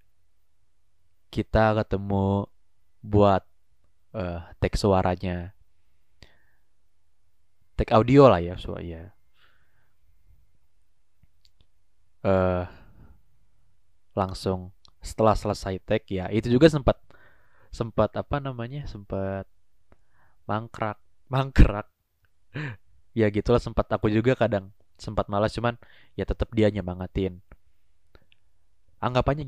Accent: native